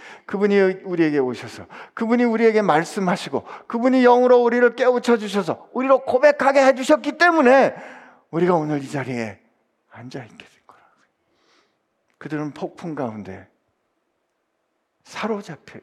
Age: 50-69